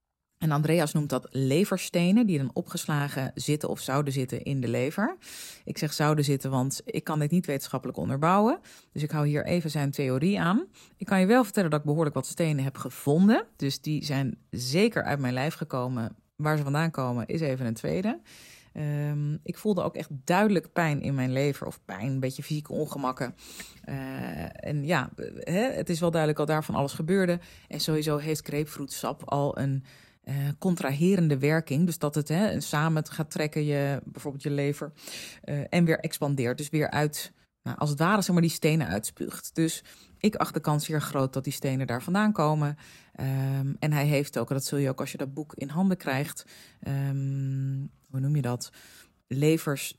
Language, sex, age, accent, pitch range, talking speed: Dutch, female, 30-49, Dutch, 135-170 Hz, 195 wpm